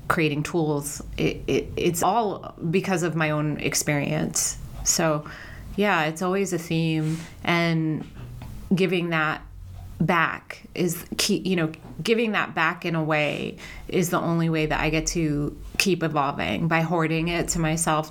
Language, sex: English, female